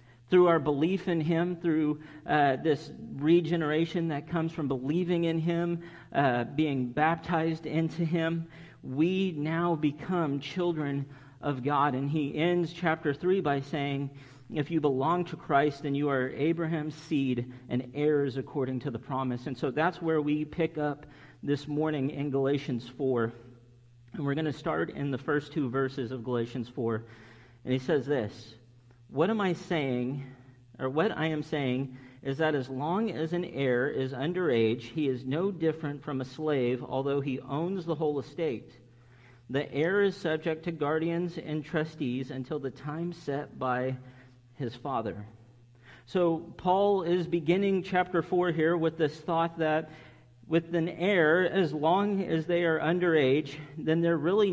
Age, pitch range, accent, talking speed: 40-59, 130-165 Hz, American, 160 wpm